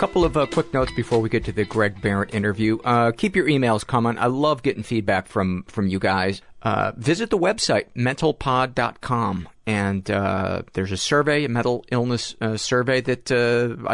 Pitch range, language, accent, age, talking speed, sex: 100-120 Hz, English, American, 40-59, 185 wpm, male